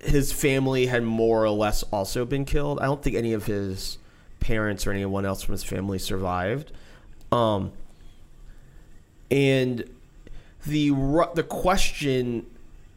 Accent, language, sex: American, English, male